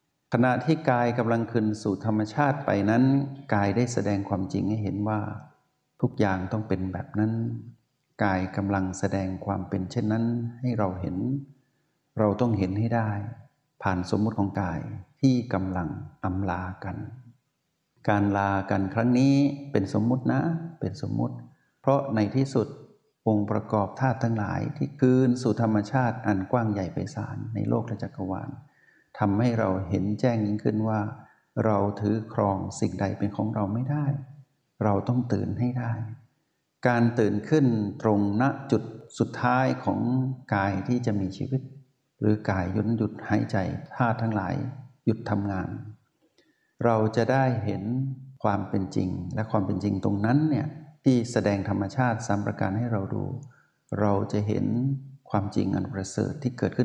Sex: male